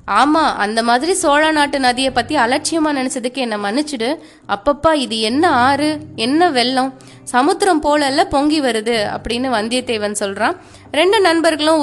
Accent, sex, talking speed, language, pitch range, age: native, female, 130 wpm, Tamil, 235-325 Hz, 20-39